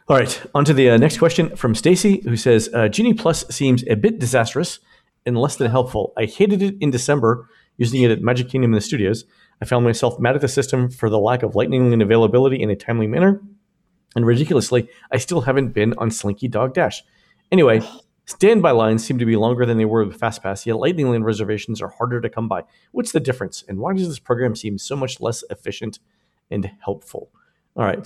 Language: English